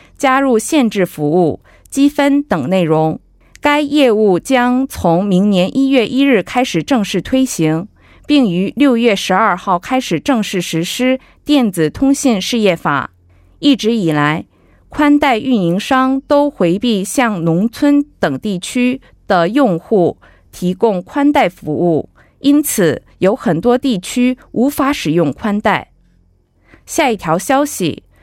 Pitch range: 175-260 Hz